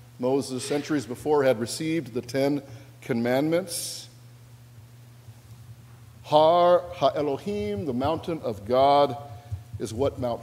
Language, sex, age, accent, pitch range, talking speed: English, male, 50-69, American, 120-155 Hz, 105 wpm